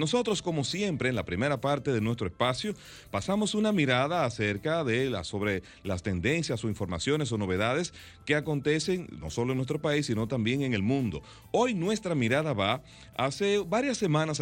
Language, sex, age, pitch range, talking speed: Spanish, male, 40-59, 110-155 Hz, 175 wpm